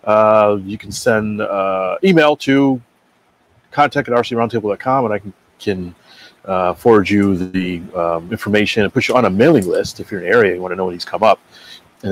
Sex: male